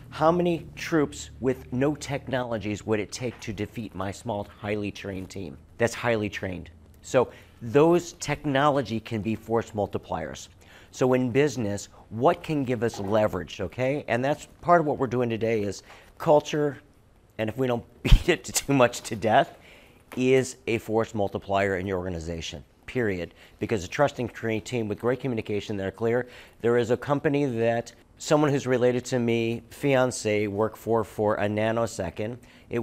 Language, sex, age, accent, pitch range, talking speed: English, male, 50-69, American, 105-130 Hz, 165 wpm